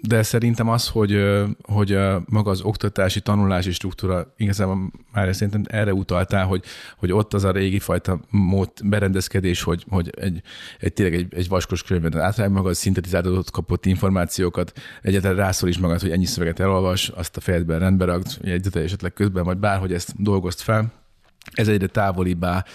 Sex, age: male, 30-49